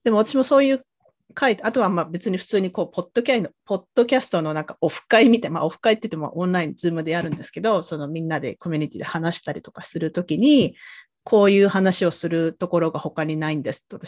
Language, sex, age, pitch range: Japanese, female, 40-59, 165-220 Hz